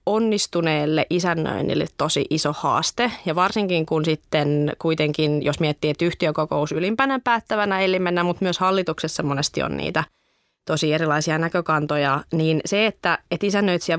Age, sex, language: 20-39, female, Finnish